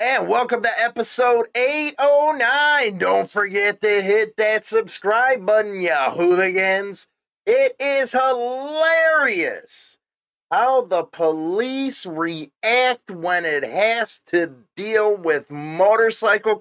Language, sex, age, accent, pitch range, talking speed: English, male, 30-49, American, 165-230 Hz, 100 wpm